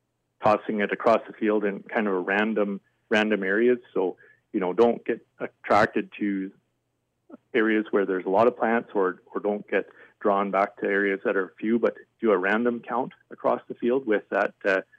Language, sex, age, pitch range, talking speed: English, male, 40-59, 100-120 Hz, 190 wpm